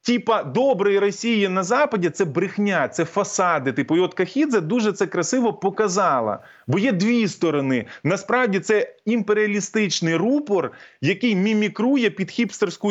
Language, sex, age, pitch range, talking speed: Ukrainian, male, 20-39, 195-245 Hz, 145 wpm